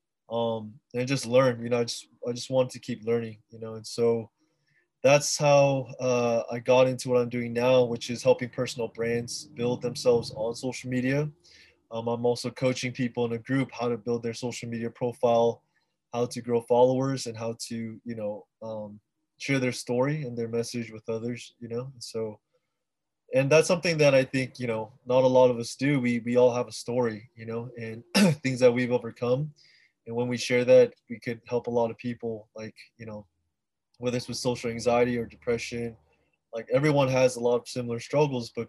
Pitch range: 115-130 Hz